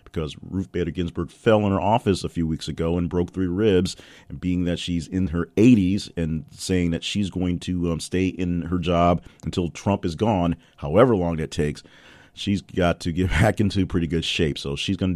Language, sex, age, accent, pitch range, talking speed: English, male, 40-59, American, 85-100 Hz, 215 wpm